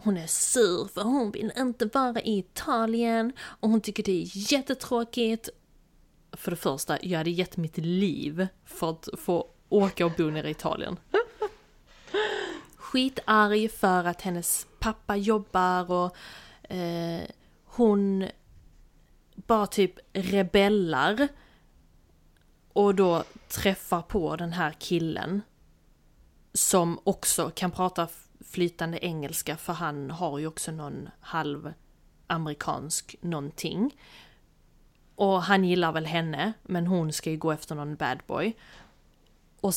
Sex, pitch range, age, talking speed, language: female, 165-225 Hz, 30-49, 125 wpm, Swedish